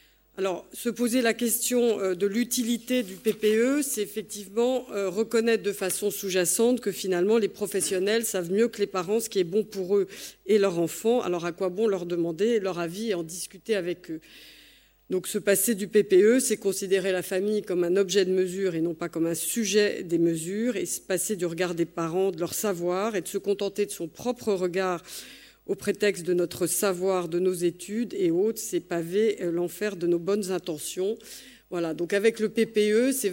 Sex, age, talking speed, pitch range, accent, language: female, 50-69, 195 wpm, 180-225 Hz, French, French